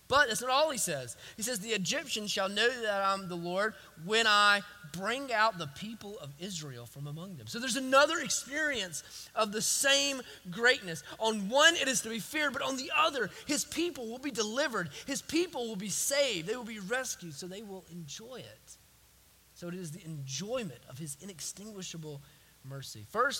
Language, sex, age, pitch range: English, male, 20-39, 175-260 Hz